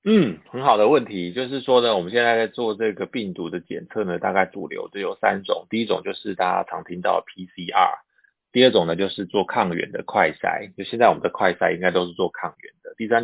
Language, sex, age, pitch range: Chinese, male, 20-39, 95-130 Hz